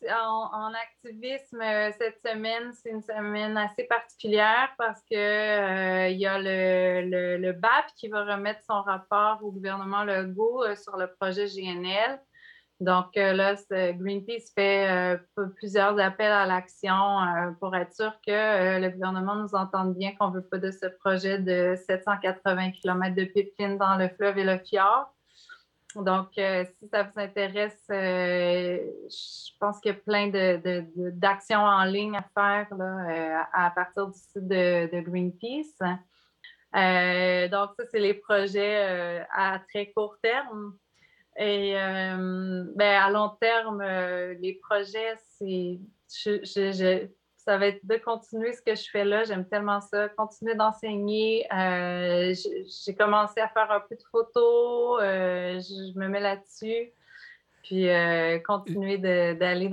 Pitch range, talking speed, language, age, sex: 185-210 Hz, 150 wpm, French, 30-49, female